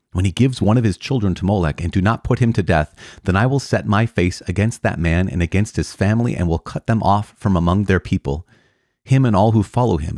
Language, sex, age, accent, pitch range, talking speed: English, male, 30-49, American, 80-105 Hz, 260 wpm